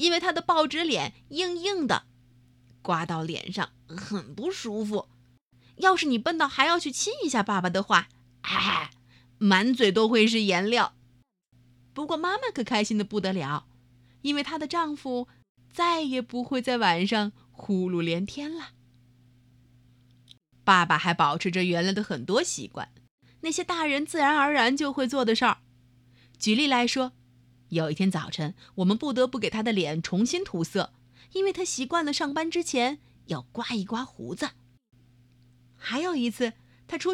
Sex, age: female, 30-49